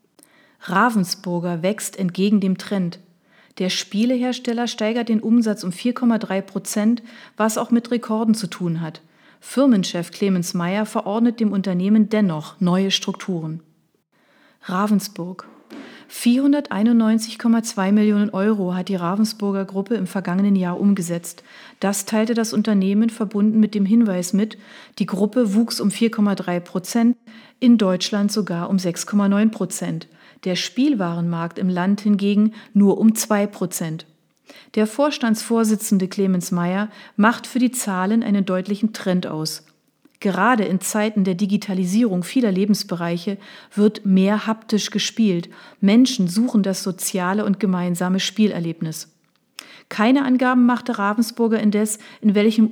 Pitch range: 185-225 Hz